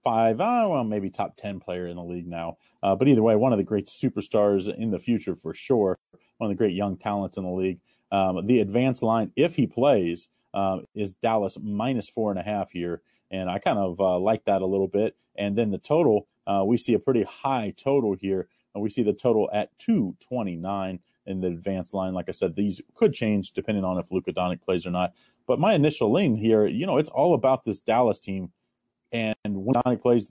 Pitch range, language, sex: 95-120 Hz, English, male